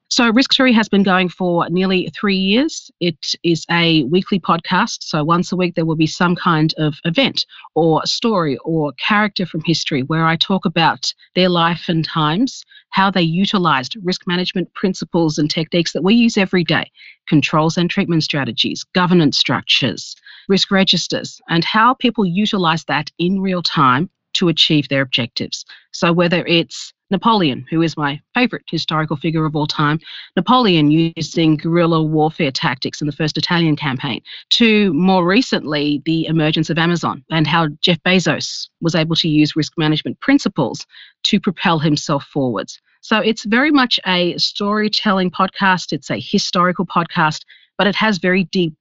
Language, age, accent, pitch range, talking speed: English, 40-59, Australian, 155-190 Hz, 165 wpm